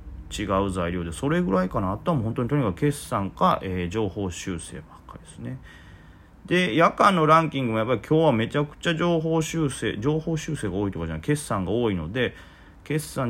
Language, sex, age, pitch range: Japanese, male, 40-59, 90-125 Hz